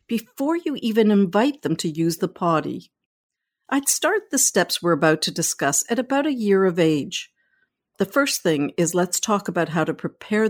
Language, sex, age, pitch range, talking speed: English, female, 60-79, 160-240 Hz, 190 wpm